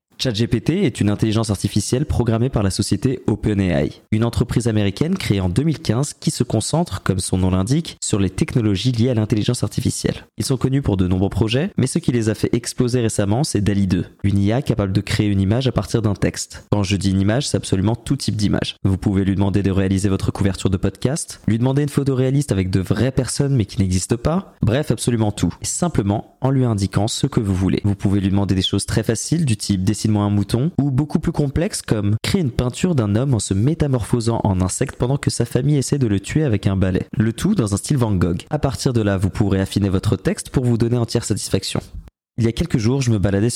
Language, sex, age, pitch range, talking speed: French, male, 20-39, 100-130 Hz, 235 wpm